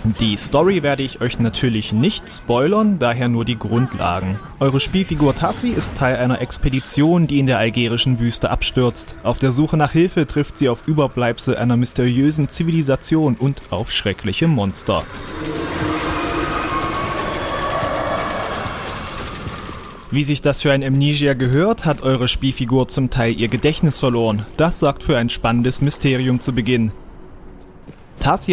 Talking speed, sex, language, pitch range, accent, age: 135 wpm, male, German, 120-150 Hz, German, 30-49